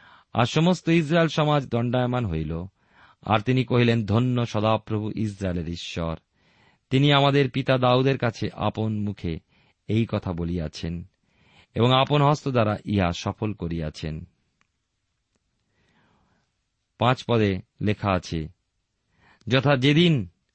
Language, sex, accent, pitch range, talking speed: Bengali, male, native, 95-130 Hz, 40 wpm